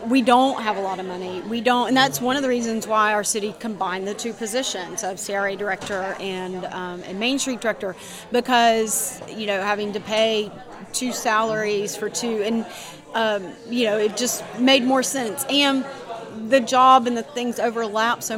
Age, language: 30-49, English